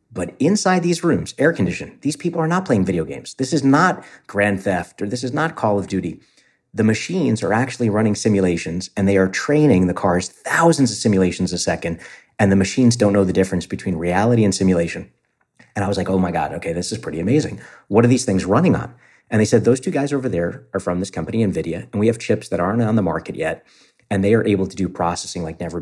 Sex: male